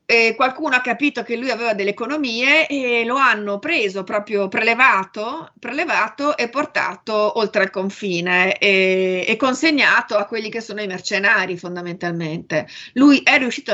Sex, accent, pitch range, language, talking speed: female, native, 190-235 Hz, Italian, 150 wpm